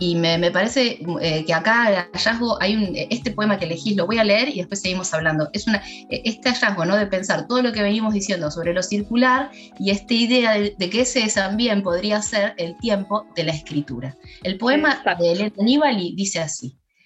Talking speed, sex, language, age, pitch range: 210 wpm, female, Spanish, 20-39, 160-210 Hz